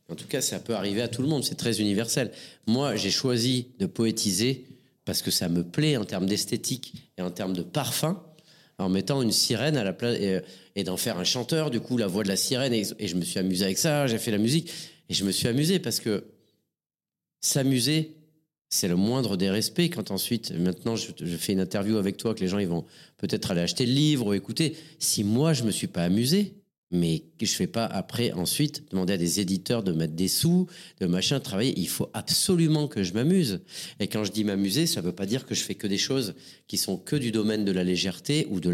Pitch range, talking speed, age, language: 95-155 Hz, 240 wpm, 40-59, French